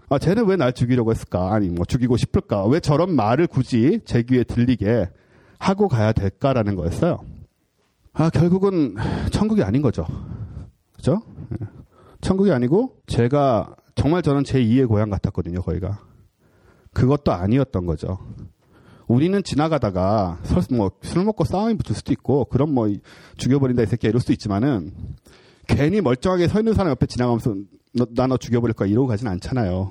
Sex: male